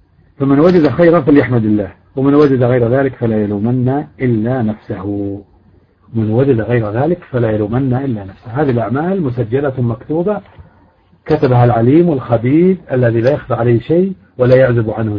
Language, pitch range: Arabic, 110-140 Hz